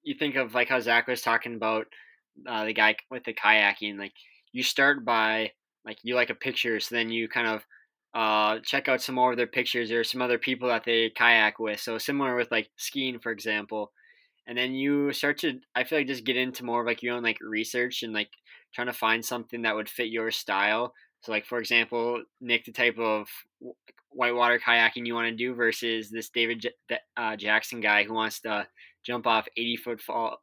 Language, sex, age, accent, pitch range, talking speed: English, male, 20-39, American, 115-125 Hz, 215 wpm